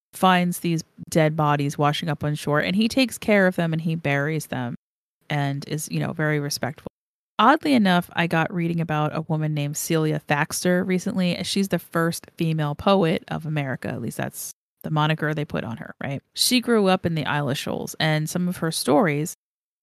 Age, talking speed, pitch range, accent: 30-49, 195 wpm, 150-180 Hz, American